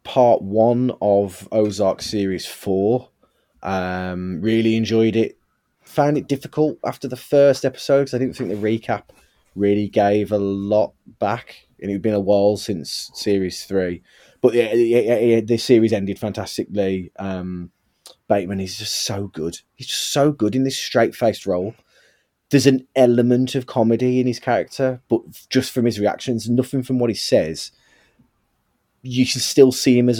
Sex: male